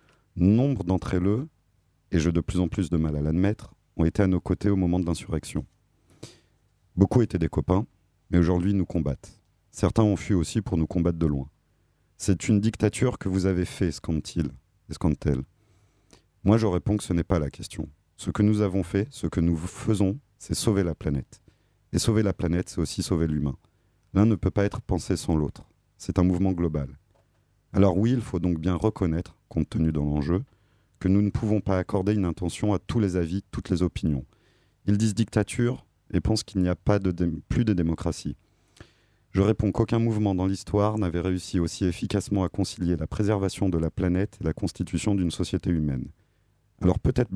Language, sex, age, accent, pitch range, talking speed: French, male, 30-49, French, 85-105 Hz, 195 wpm